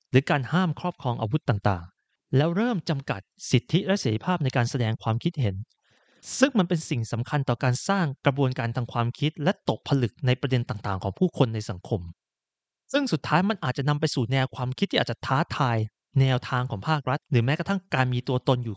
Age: 30-49